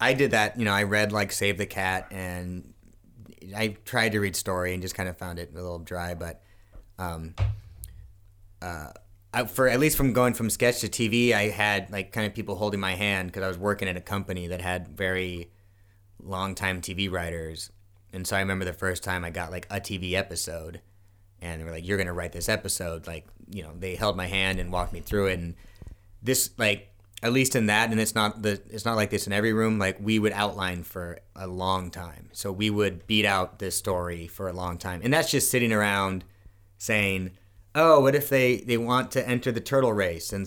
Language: English